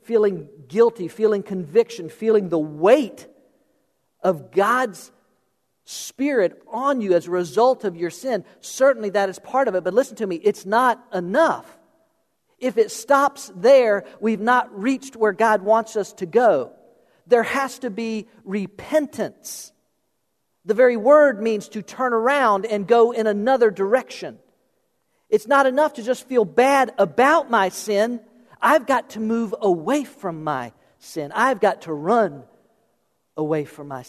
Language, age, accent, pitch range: English, 50-69, American, 165-230 Hz